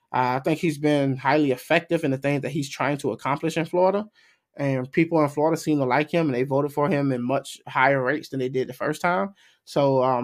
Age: 20-39